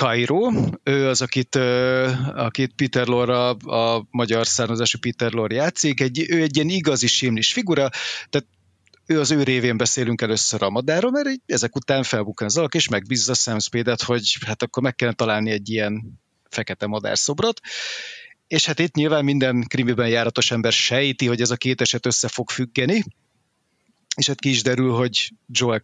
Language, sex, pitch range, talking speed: Hungarian, male, 115-145 Hz, 175 wpm